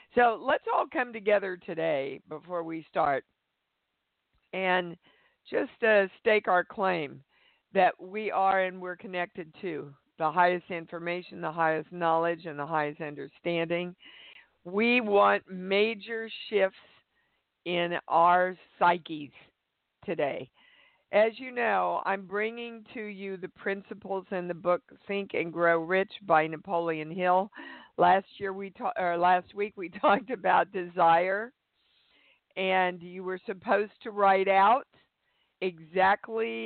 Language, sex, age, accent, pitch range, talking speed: English, female, 50-69, American, 175-210 Hz, 130 wpm